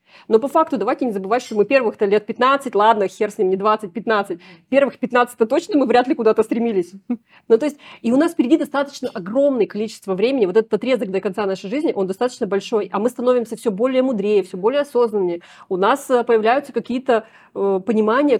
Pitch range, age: 215-270 Hz, 30-49